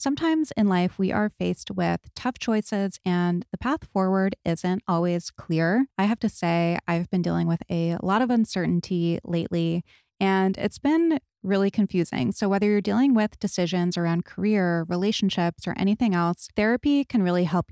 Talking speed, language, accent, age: 170 wpm, English, American, 20-39